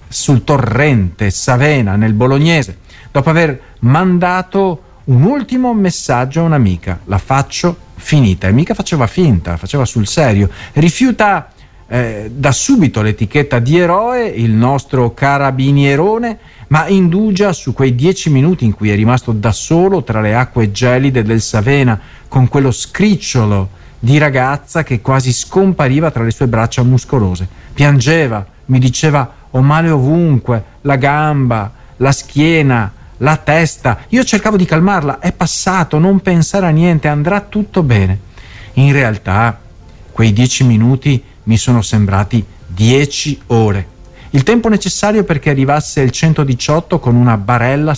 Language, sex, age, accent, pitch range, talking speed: Italian, male, 50-69, native, 115-155 Hz, 135 wpm